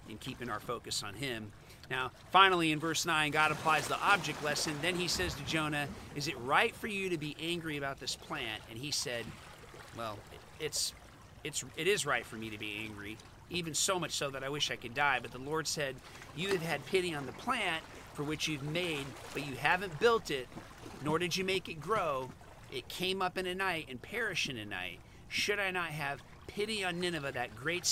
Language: English